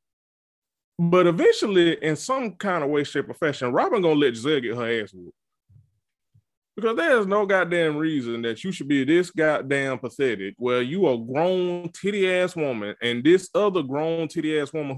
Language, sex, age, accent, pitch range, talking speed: English, male, 20-39, American, 140-195 Hz, 175 wpm